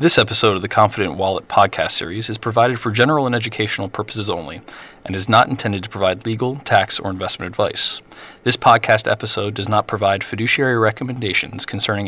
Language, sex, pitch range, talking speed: English, male, 100-120 Hz, 180 wpm